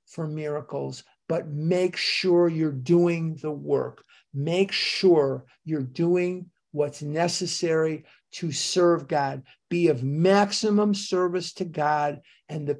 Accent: American